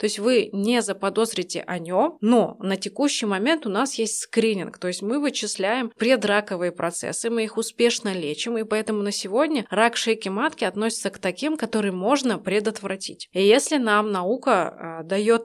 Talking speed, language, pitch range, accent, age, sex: 165 wpm, Russian, 195-230 Hz, native, 20-39, female